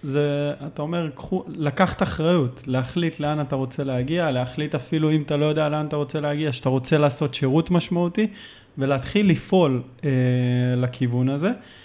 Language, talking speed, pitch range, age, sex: Hebrew, 155 wpm, 130-155 Hz, 20-39, male